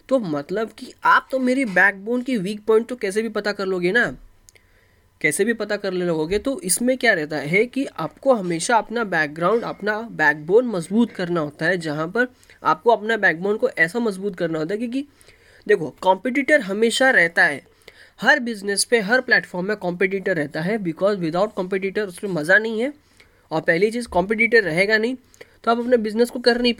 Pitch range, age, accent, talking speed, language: 175-240 Hz, 10-29, native, 195 wpm, Hindi